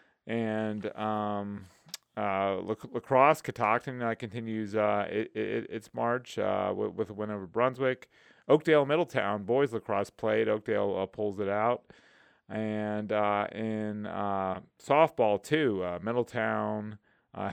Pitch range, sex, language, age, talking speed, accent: 105-120 Hz, male, English, 30-49, 135 wpm, American